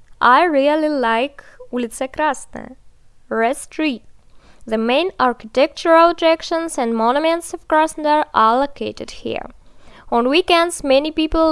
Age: 10-29